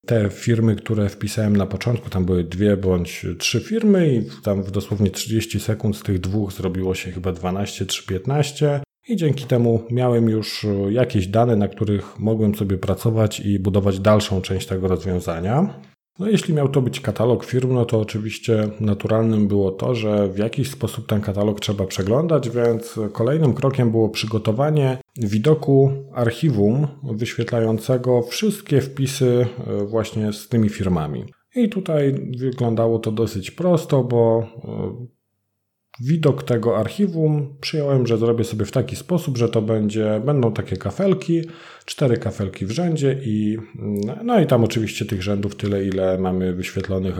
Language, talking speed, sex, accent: Polish, 150 wpm, male, native